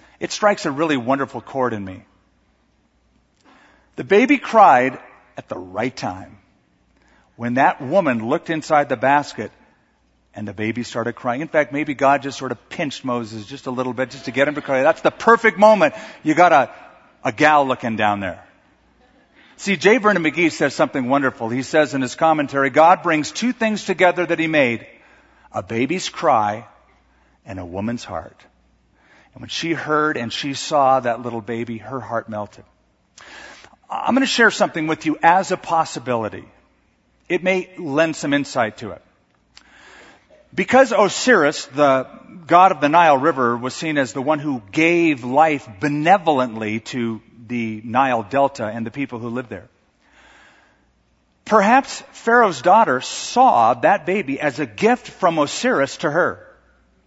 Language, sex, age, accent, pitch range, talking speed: English, male, 50-69, American, 115-165 Hz, 165 wpm